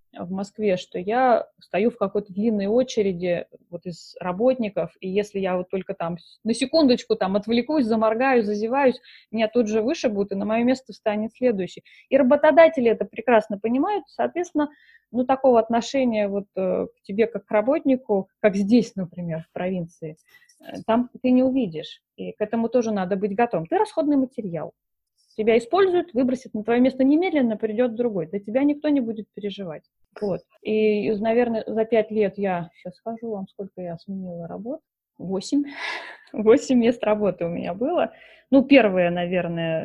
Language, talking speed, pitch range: Russian, 165 wpm, 185-255 Hz